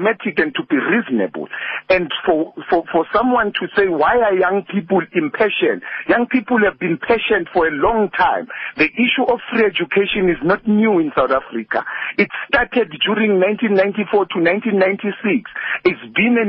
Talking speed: 155 wpm